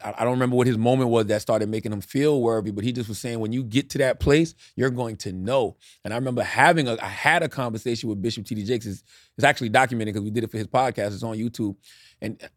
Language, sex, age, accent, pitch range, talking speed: English, male, 30-49, American, 110-135 Hz, 265 wpm